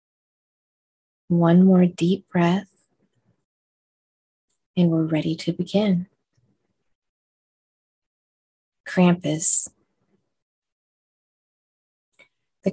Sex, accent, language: female, American, English